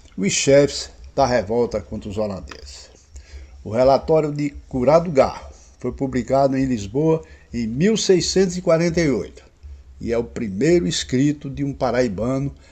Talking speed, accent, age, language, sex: 125 wpm, Brazilian, 60-79, Portuguese, male